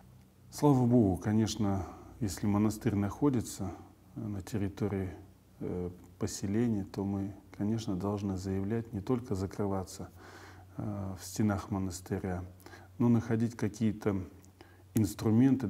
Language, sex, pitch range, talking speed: Russian, male, 95-110 Hz, 90 wpm